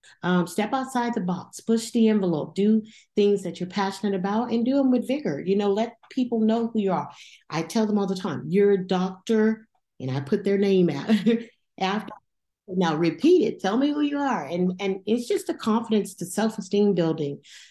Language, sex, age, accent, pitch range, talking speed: English, female, 40-59, American, 165-225 Hz, 205 wpm